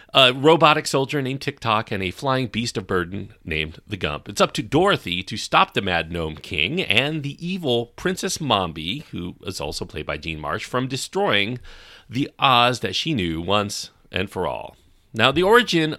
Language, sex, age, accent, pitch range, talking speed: English, male, 40-59, American, 95-130 Hz, 190 wpm